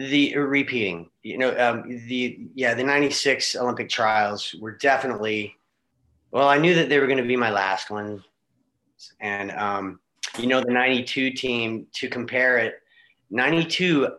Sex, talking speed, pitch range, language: male, 150 wpm, 120-145 Hz, English